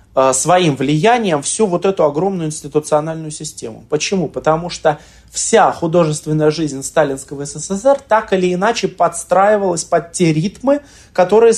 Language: Russian